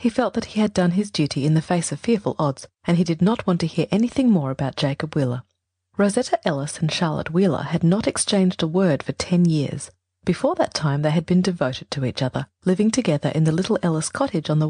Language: English